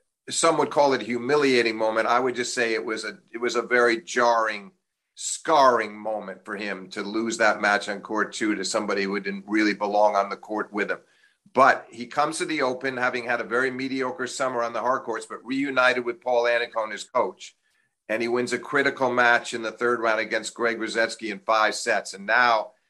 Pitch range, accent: 110-125 Hz, American